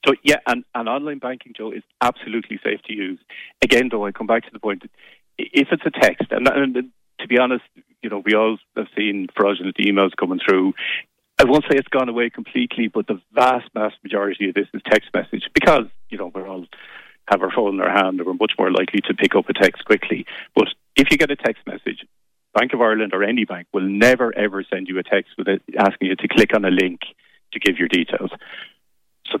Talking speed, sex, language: 225 wpm, male, English